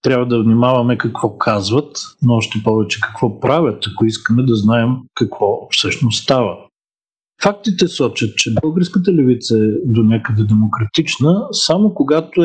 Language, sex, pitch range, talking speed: Bulgarian, male, 110-140 Hz, 135 wpm